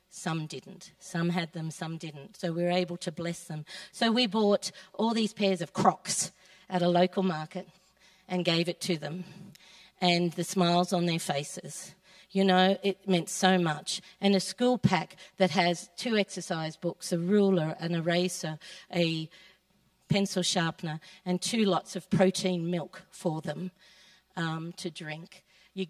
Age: 50-69